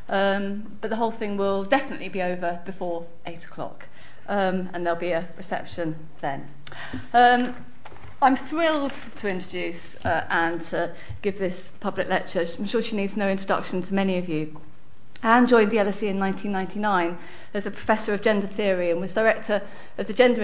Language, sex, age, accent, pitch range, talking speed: English, female, 40-59, British, 180-215 Hz, 170 wpm